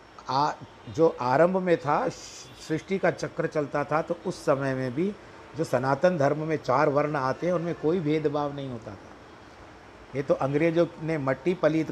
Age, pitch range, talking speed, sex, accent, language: 50-69, 120-145 Hz, 175 wpm, male, native, Hindi